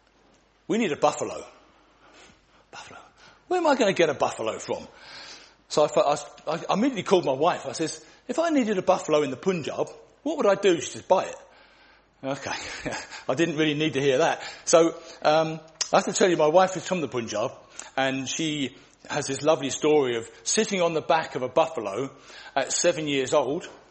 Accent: British